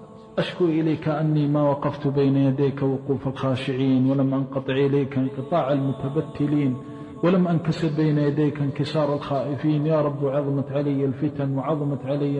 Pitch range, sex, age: 145-170 Hz, male, 50-69